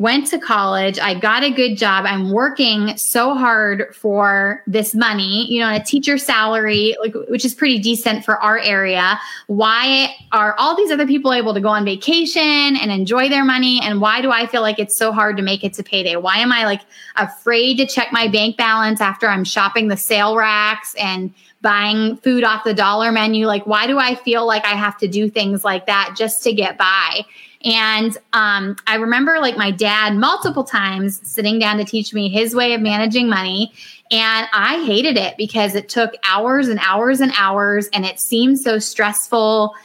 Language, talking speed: English, 200 wpm